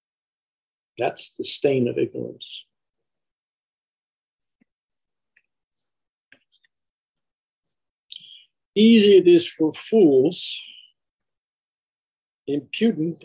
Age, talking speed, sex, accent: 60-79, 50 wpm, male, American